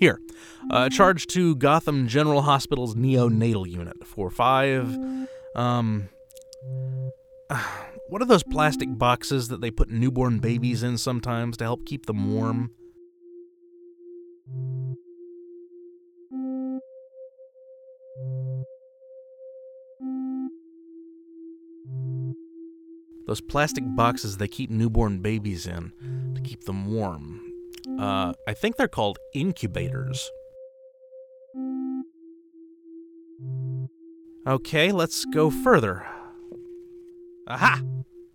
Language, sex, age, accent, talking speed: English, male, 30-49, American, 85 wpm